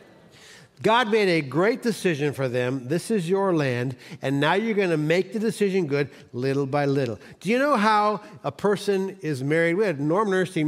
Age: 40-59